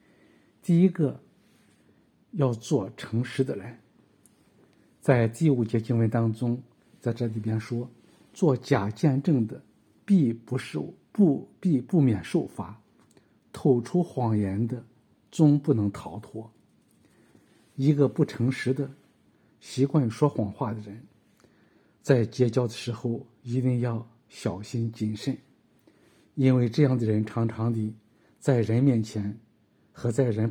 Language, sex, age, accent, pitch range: Chinese, male, 50-69, native, 115-135 Hz